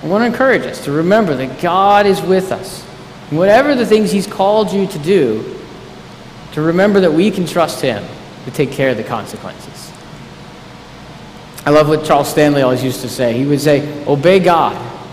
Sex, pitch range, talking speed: male, 145-195 Hz, 190 wpm